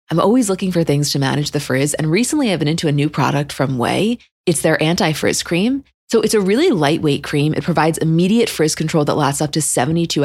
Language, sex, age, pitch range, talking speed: English, female, 20-39, 140-180 Hz, 230 wpm